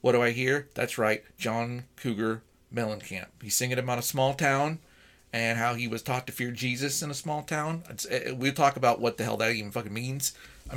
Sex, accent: male, American